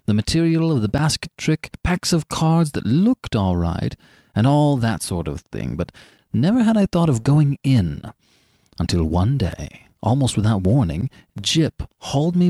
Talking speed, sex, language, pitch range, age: 175 wpm, male, English, 100-155 Hz, 30-49